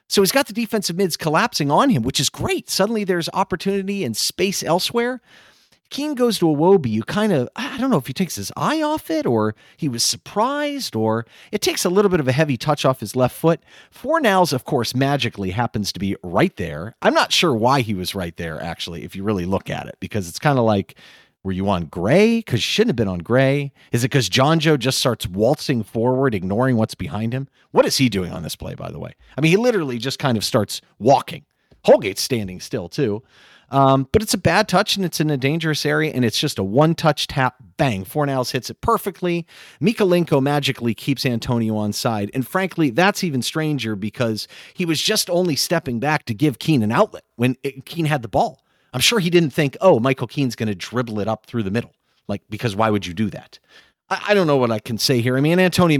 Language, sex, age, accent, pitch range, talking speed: English, male, 40-59, American, 115-180 Hz, 235 wpm